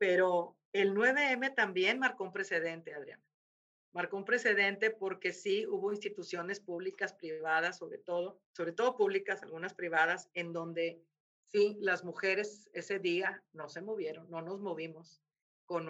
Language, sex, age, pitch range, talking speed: Spanish, female, 50-69, 170-210 Hz, 145 wpm